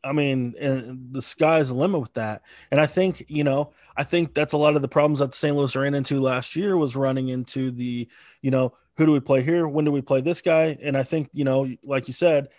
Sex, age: male, 20-39